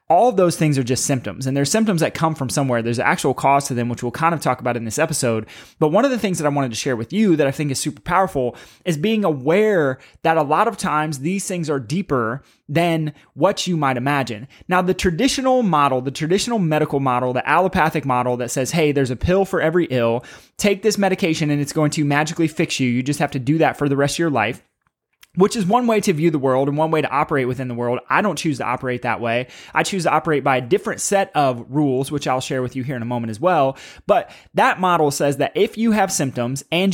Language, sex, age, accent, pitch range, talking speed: English, male, 20-39, American, 135-180 Hz, 260 wpm